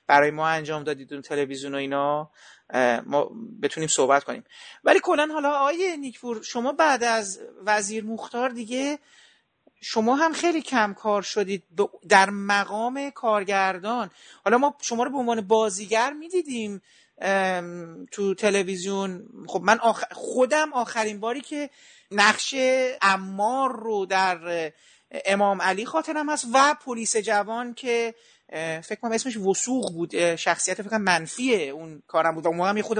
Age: 40-59